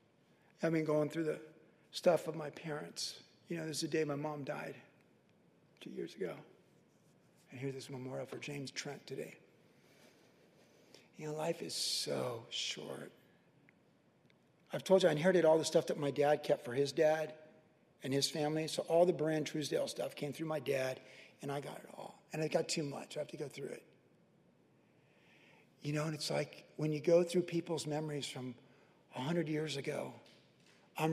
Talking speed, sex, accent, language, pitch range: 185 wpm, male, American, English, 140-165 Hz